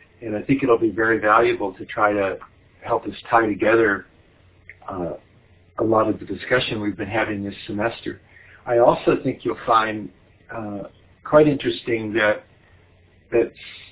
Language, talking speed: English, 150 wpm